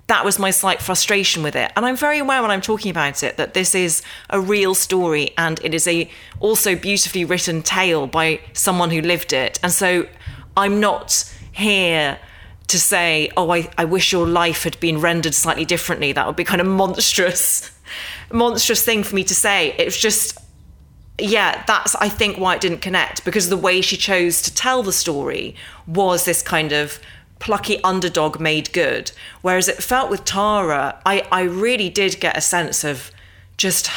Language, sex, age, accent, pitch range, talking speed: English, female, 30-49, British, 155-195 Hz, 190 wpm